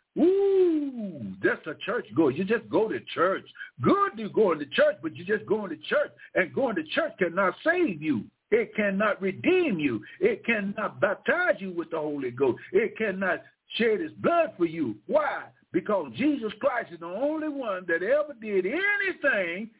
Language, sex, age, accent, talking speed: English, male, 60-79, American, 180 wpm